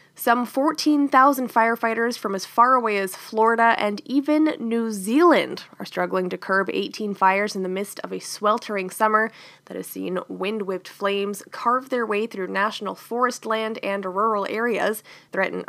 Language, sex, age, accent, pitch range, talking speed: English, female, 20-39, American, 200-250 Hz, 160 wpm